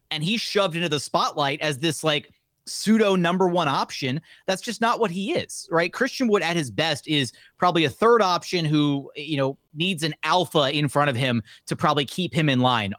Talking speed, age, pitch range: 215 wpm, 30-49, 135-170 Hz